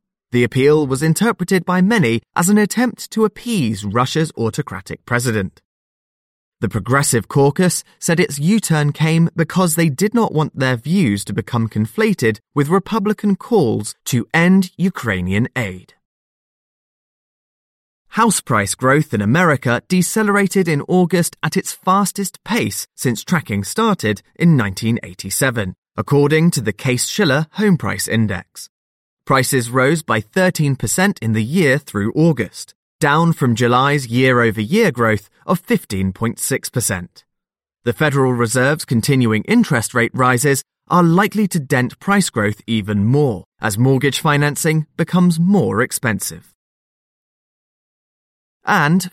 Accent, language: British, English